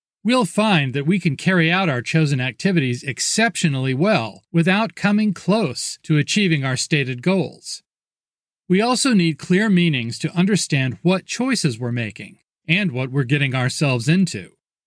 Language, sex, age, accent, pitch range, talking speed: English, male, 40-59, American, 140-185 Hz, 150 wpm